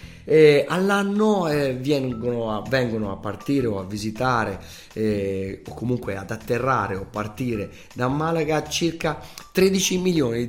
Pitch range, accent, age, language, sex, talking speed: 105-135 Hz, native, 30-49, Italian, male, 130 wpm